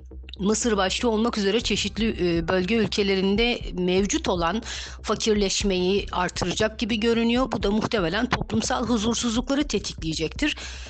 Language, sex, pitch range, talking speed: Turkish, female, 180-230 Hz, 105 wpm